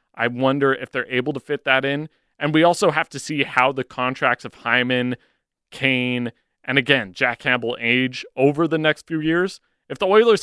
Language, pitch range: English, 125-160 Hz